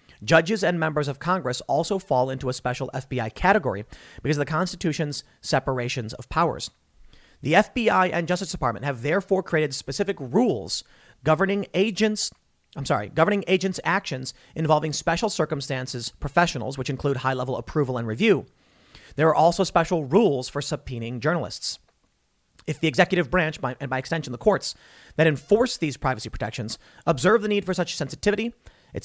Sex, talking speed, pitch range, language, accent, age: male, 155 wpm, 130-175 Hz, English, American, 40-59